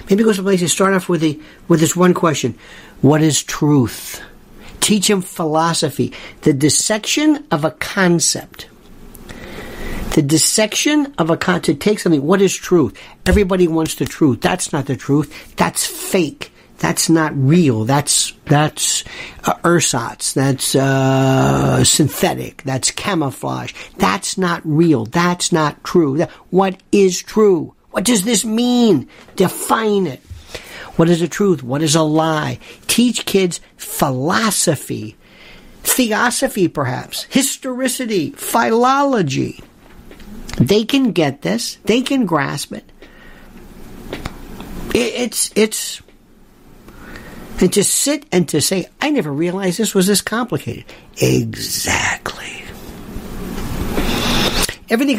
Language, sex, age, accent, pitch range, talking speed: English, male, 60-79, American, 150-210 Hz, 120 wpm